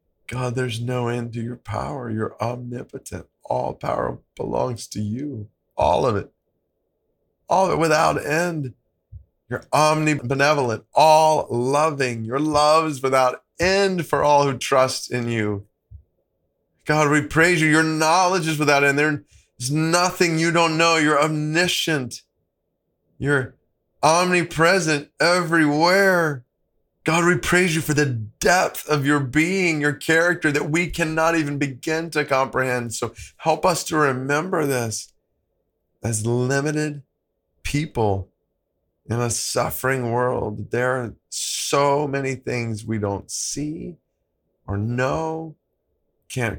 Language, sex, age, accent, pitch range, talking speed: English, male, 20-39, American, 120-160 Hz, 130 wpm